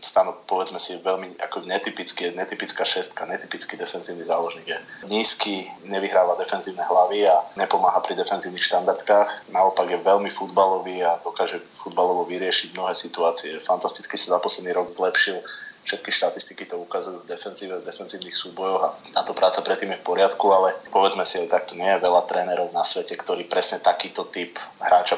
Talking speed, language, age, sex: 165 wpm, Slovak, 20-39, male